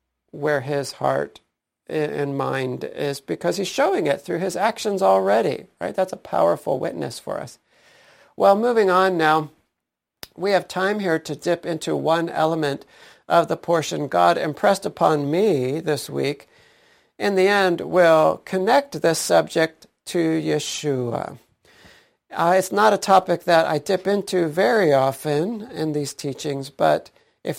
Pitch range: 145-190 Hz